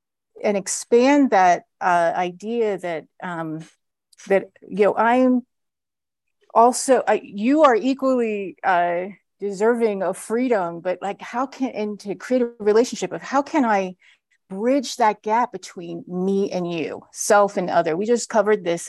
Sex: female